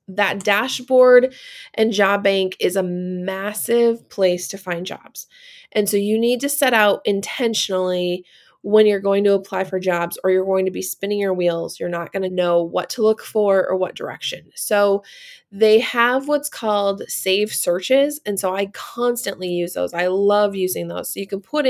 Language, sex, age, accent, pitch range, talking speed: English, female, 20-39, American, 185-230 Hz, 190 wpm